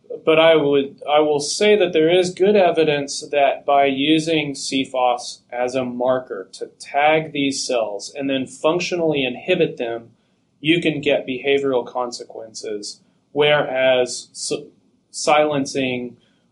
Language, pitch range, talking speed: English, 125-155 Hz, 125 wpm